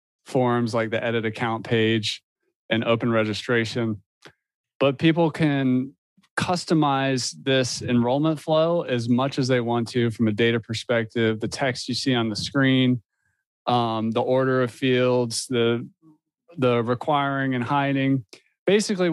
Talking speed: 140 wpm